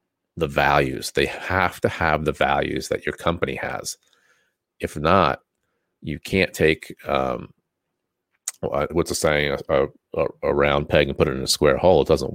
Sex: male